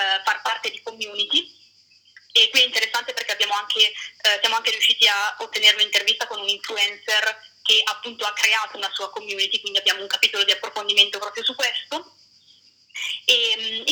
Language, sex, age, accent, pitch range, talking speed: Italian, female, 20-39, native, 205-270 Hz, 170 wpm